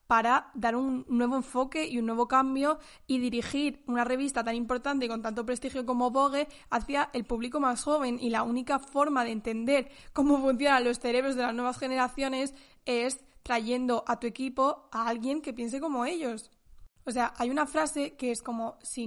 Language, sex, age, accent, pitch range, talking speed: Spanish, female, 10-29, Spanish, 235-275 Hz, 190 wpm